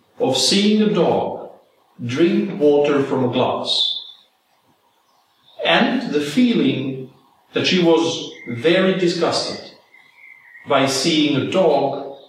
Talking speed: 105 wpm